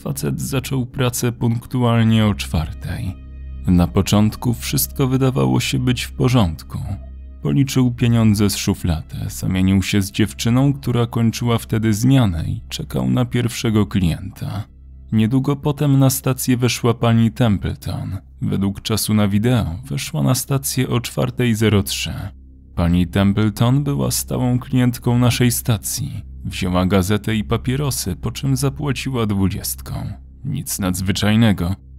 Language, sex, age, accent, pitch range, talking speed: Polish, male, 20-39, native, 95-125 Hz, 120 wpm